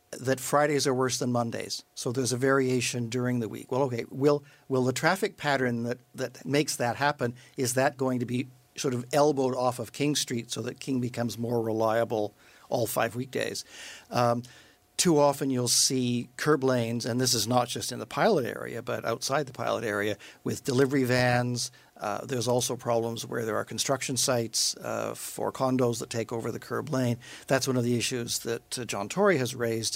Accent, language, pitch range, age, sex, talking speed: American, English, 120-135 Hz, 50-69, male, 200 wpm